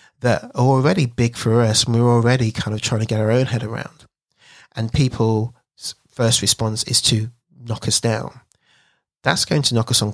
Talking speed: 195 wpm